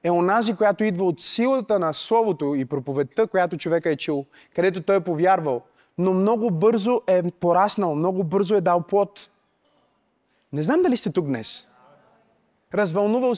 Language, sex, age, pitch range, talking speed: Bulgarian, male, 20-39, 170-230 Hz, 155 wpm